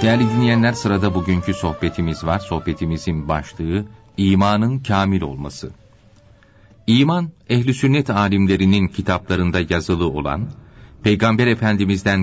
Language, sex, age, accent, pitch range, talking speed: Turkish, male, 40-59, native, 95-125 Hz, 100 wpm